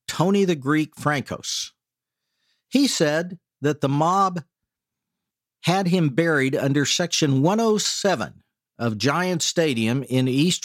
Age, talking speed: 50-69, 115 wpm